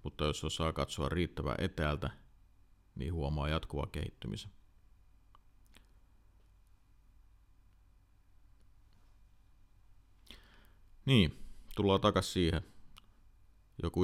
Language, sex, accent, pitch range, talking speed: Finnish, male, native, 80-100 Hz, 65 wpm